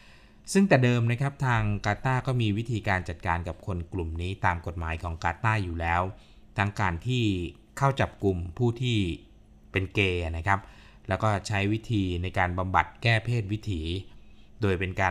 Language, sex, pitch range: Thai, male, 90-110 Hz